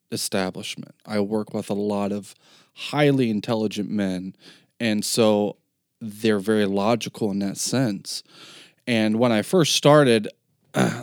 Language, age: English, 20-39